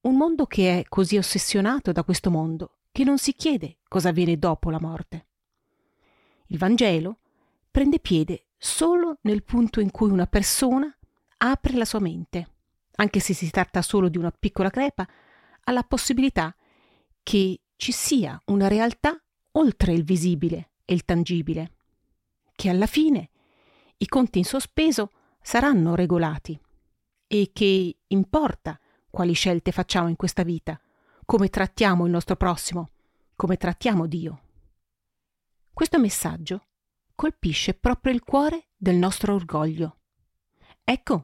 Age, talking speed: 40-59, 130 wpm